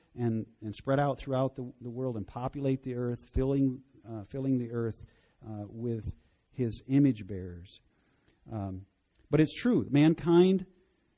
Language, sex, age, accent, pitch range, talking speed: English, male, 50-69, American, 105-130 Hz, 145 wpm